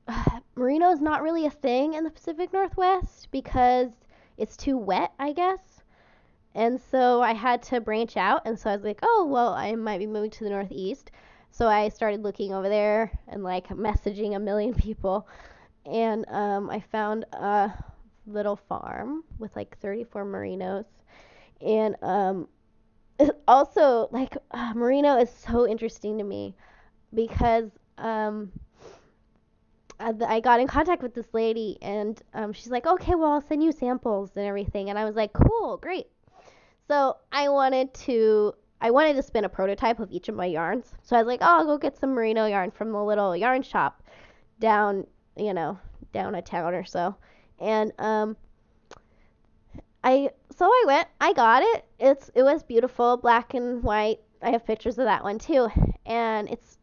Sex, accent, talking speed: female, American, 170 wpm